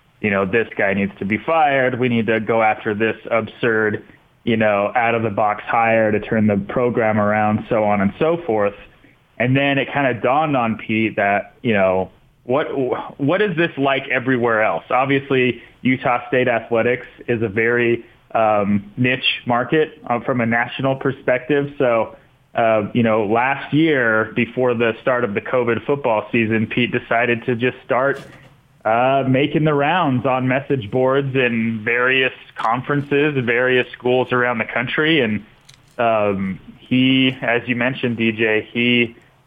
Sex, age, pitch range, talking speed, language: male, 30-49, 110-130 Hz, 160 wpm, English